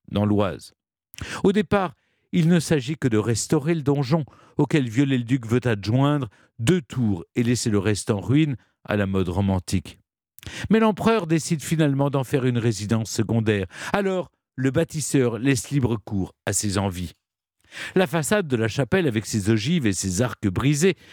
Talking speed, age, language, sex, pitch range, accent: 165 wpm, 50-69, French, male, 110-160 Hz, French